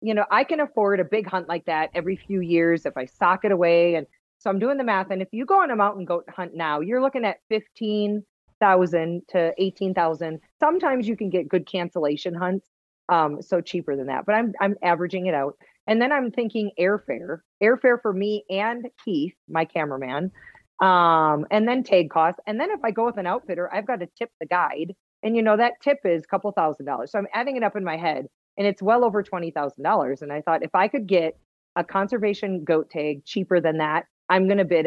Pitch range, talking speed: 165-210 Hz, 225 wpm